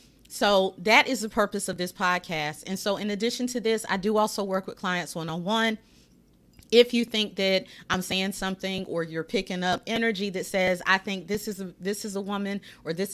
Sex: female